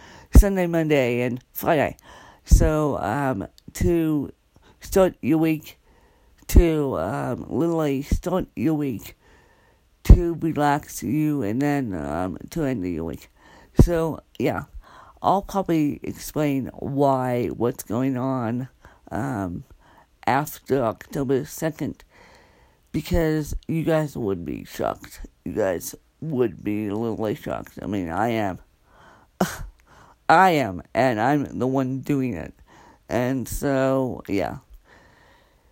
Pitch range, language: 125-160 Hz, English